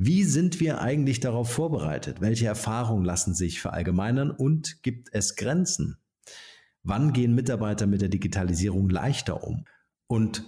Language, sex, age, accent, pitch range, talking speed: German, male, 50-69, German, 95-125 Hz, 135 wpm